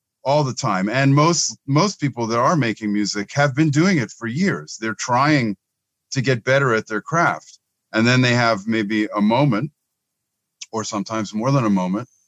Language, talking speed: English, 185 wpm